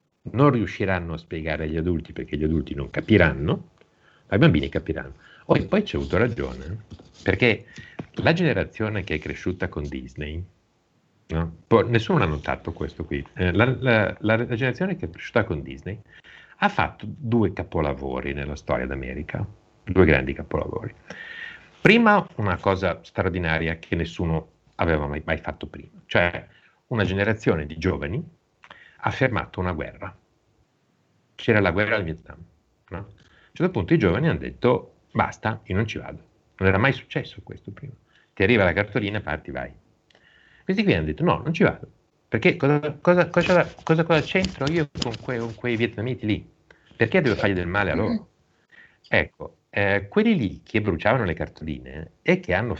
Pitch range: 80-115 Hz